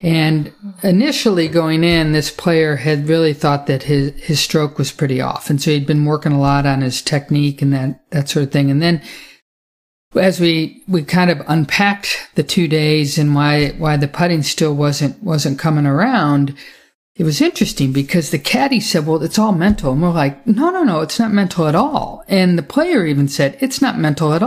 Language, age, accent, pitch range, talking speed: English, 50-69, American, 145-180 Hz, 205 wpm